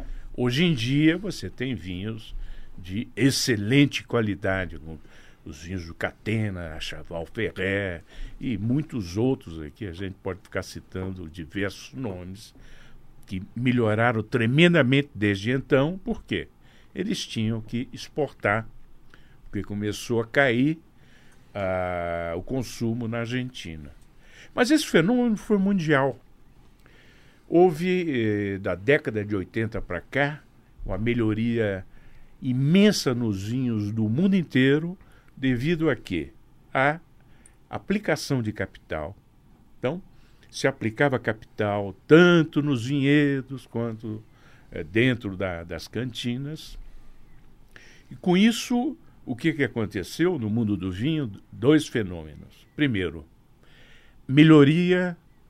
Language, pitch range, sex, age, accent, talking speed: Portuguese, 105-140 Hz, male, 60-79, Brazilian, 110 wpm